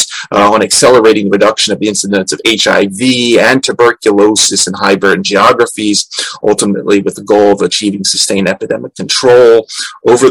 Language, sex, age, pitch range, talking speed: English, male, 30-49, 100-120 Hz, 150 wpm